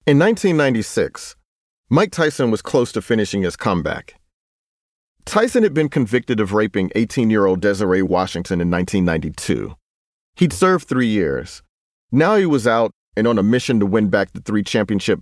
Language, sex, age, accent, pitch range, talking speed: English, male, 40-59, American, 100-145 Hz, 155 wpm